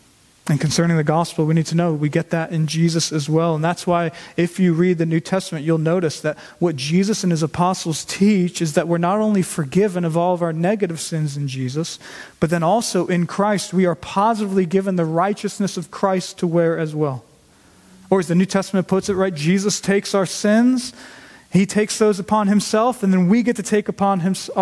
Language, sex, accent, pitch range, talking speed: English, male, American, 150-185 Hz, 215 wpm